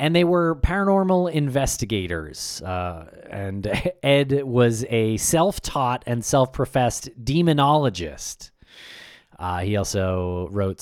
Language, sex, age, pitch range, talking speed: English, male, 30-49, 100-140 Hz, 100 wpm